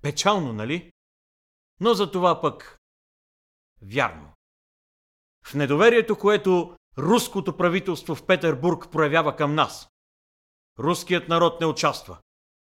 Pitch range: 110-175 Hz